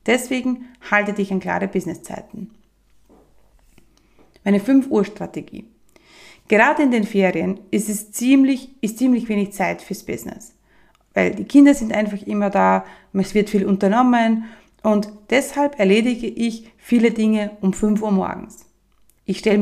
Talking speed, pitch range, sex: 140 wpm, 205-240 Hz, female